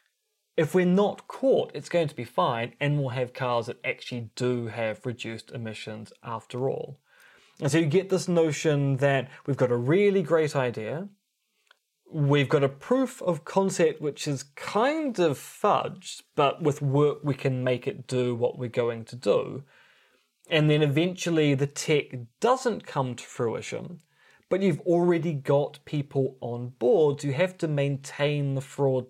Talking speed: 165 wpm